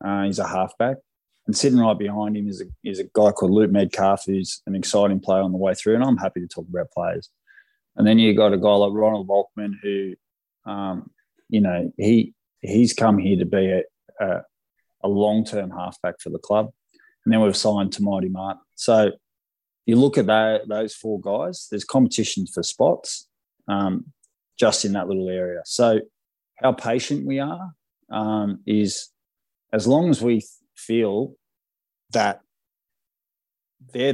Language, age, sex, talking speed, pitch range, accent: English, 20-39, male, 170 wpm, 95-120 Hz, Australian